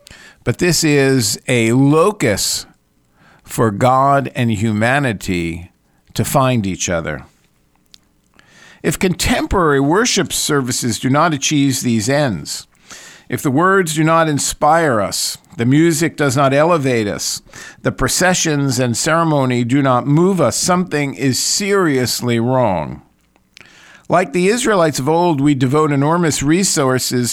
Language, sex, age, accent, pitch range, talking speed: English, male, 50-69, American, 120-160 Hz, 125 wpm